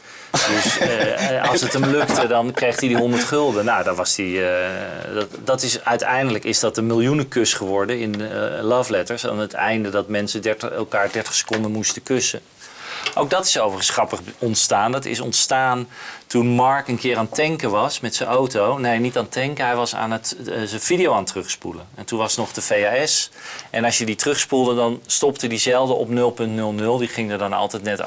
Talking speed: 210 wpm